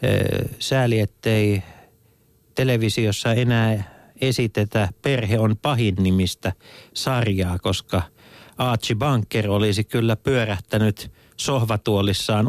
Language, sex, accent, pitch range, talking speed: Finnish, male, native, 95-115 Hz, 80 wpm